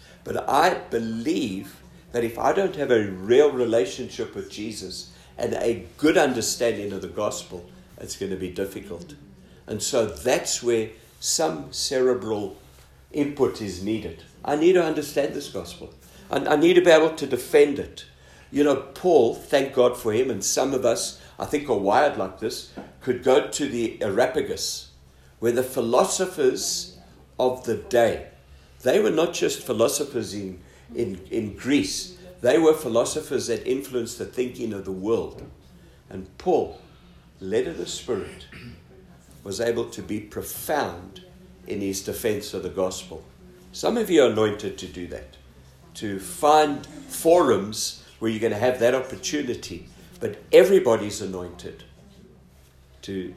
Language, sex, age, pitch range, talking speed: French, male, 60-79, 95-135 Hz, 150 wpm